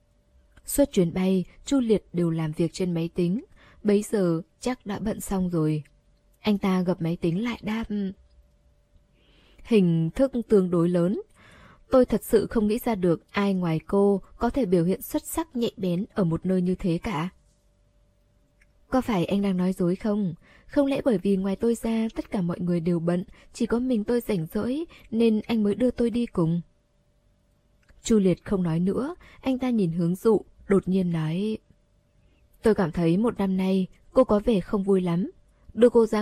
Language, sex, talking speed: Vietnamese, female, 190 wpm